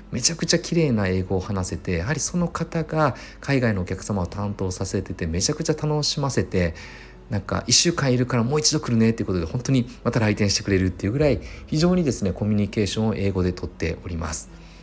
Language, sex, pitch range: Japanese, male, 90-125 Hz